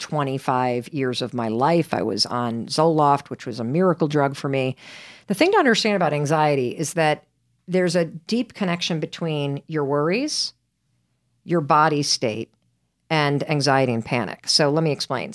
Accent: American